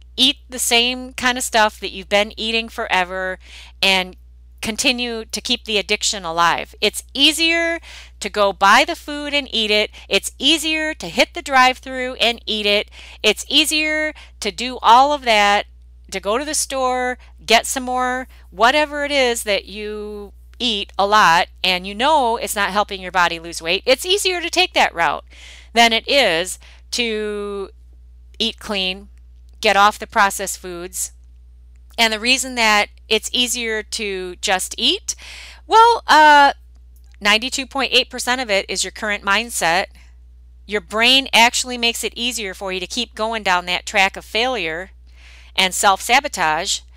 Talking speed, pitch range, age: 160 wpm, 185-255 Hz, 40-59